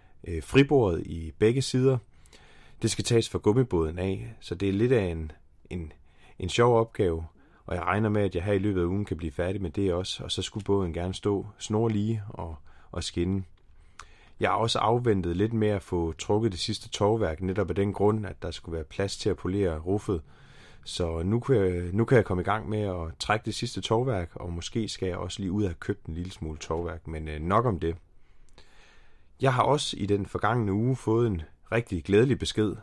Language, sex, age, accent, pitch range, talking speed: Danish, male, 30-49, native, 85-110 Hz, 215 wpm